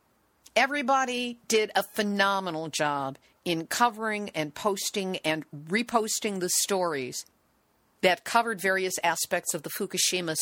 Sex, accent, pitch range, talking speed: female, American, 165-225 Hz, 115 wpm